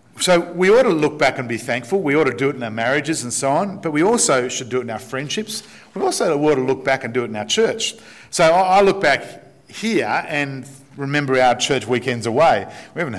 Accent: Australian